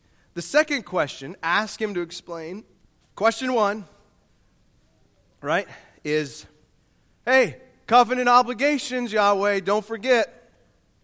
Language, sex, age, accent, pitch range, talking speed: English, male, 30-49, American, 145-215 Hz, 90 wpm